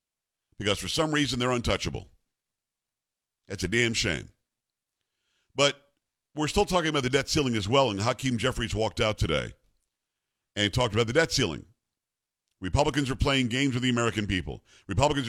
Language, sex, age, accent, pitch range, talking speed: English, male, 50-69, American, 110-145 Hz, 160 wpm